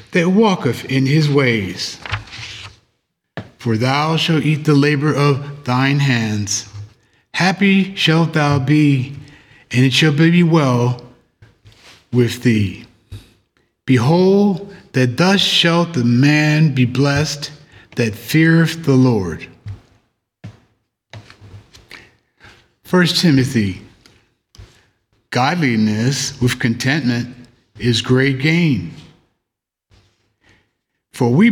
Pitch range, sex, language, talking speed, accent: 110-145 Hz, male, English, 90 wpm, American